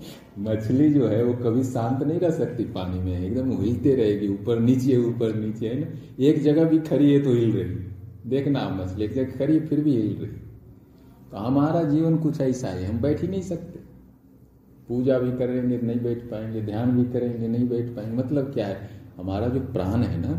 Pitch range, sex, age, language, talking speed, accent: 95-130 Hz, male, 40-59, Hindi, 200 wpm, native